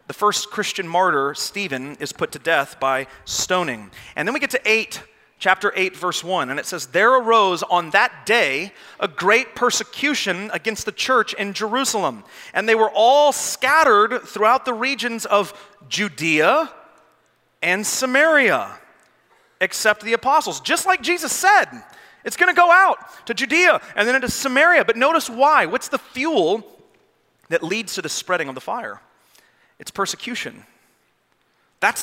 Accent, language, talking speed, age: American, English, 155 wpm, 30-49